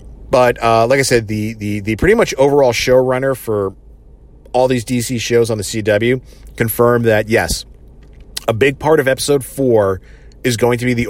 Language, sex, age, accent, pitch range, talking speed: English, male, 40-59, American, 100-125 Hz, 180 wpm